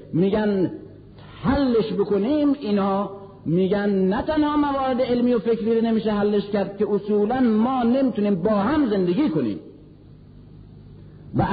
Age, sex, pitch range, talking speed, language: 50-69, male, 180-235 Hz, 120 wpm, Persian